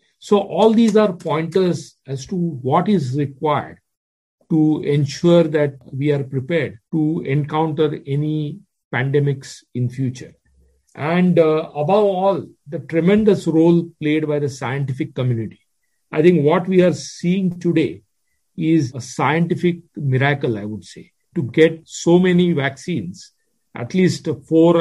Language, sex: English, male